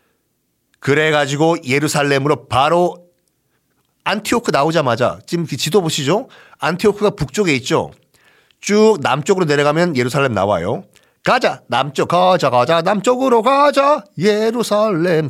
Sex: male